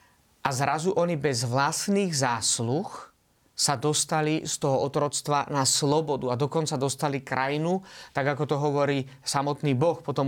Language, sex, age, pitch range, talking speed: Slovak, male, 30-49, 135-170 Hz, 140 wpm